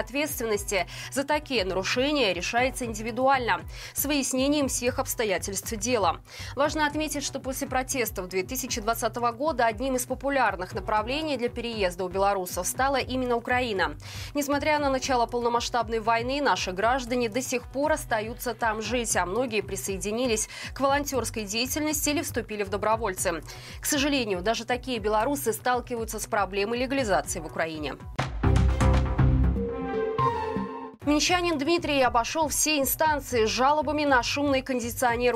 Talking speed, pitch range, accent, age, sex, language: 125 wpm, 220-285 Hz, native, 20-39, female, Russian